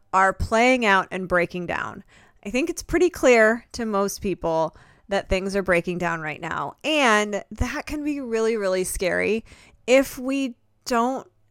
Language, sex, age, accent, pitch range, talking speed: English, female, 20-39, American, 175-230 Hz, 160 wpm